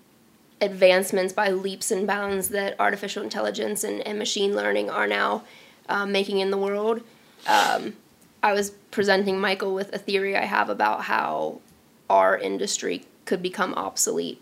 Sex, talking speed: female, 150 wpm